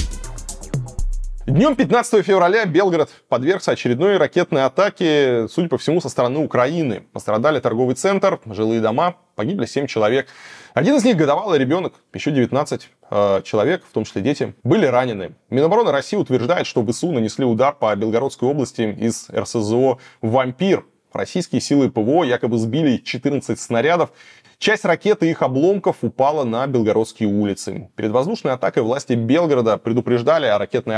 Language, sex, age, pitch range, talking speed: Russian, male, 20-39, 115-165 Hz, 140 wpm